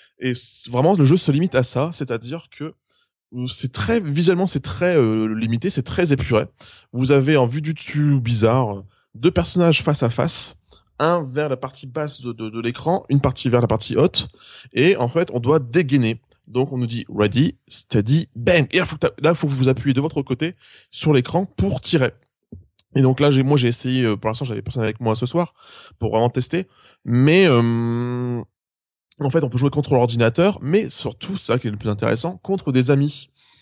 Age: 20-39